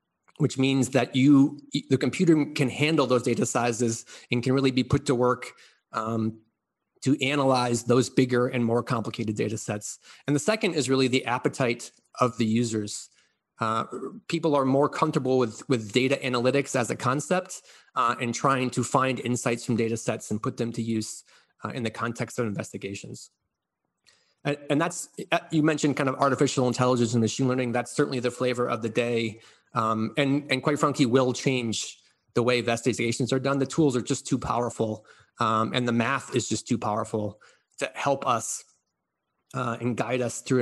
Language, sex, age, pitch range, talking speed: English, male, 30-49, 115-135 Hz, 180 wpm